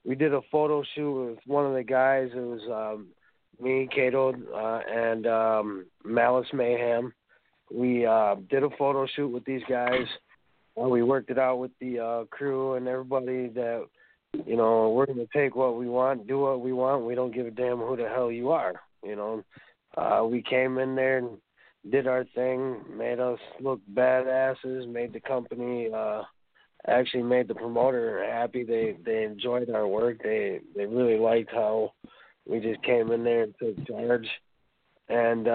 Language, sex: English, male